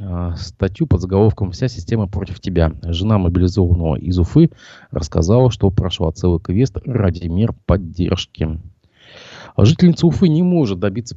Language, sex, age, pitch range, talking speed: Russian, male, 30-49, 90-115 Hz, 130 wpm